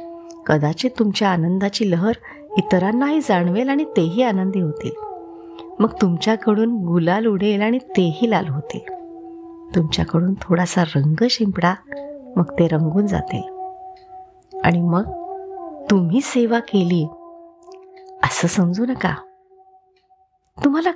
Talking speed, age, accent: 100 wpm, 30-49, native